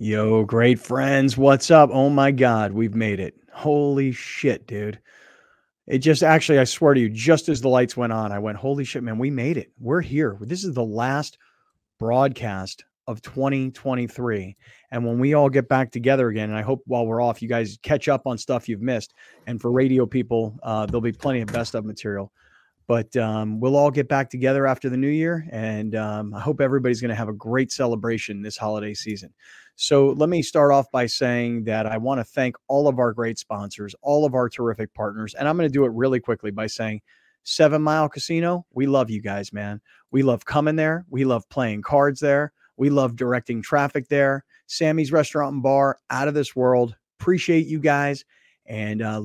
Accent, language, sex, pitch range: American, English, male, 110-140 Hz